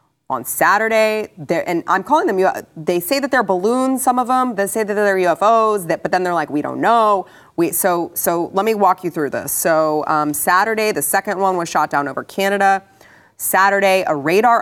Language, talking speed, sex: English, 200 wpm, female